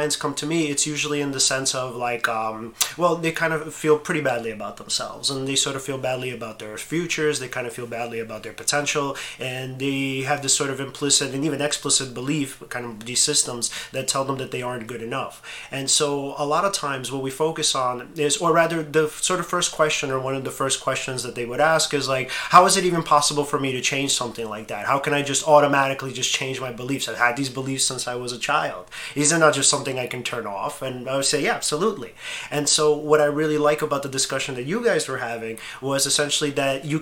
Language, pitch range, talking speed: English, 130-150 Hz, 250 wpm